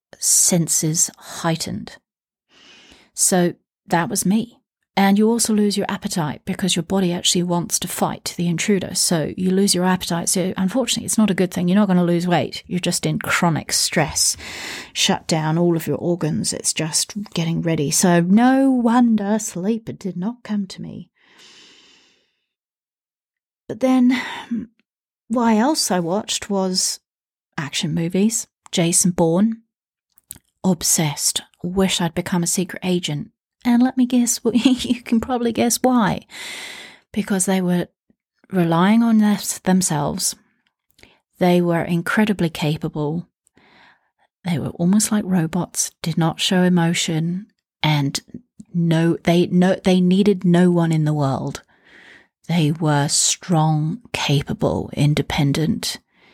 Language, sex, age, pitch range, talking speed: English, female, 40-59, 170-210 Hz, 135 wpm